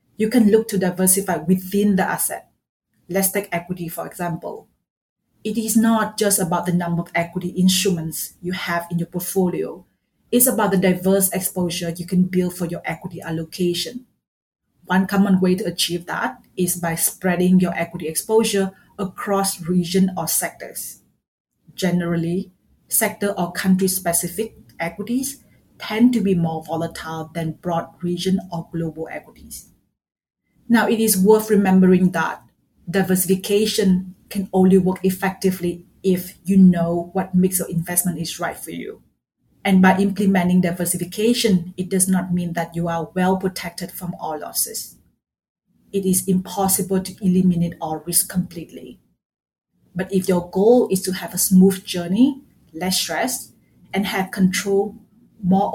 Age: 30-49